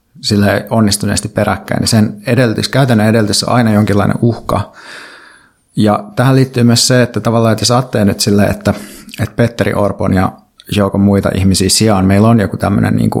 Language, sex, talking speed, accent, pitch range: Finnish, male, 170 wpm, native, 100-115 Hz